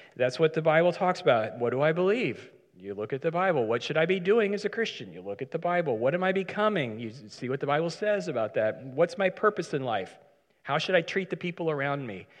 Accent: American